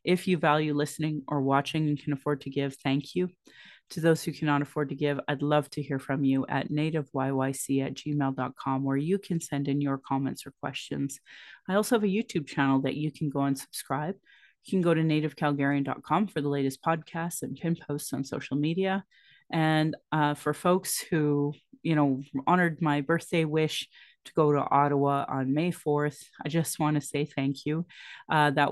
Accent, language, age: American, English, 30-49